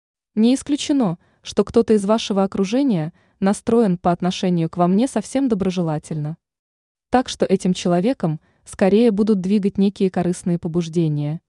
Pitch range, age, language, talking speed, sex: 170-220 Hz, 20-39, Russian, 130 wpm, female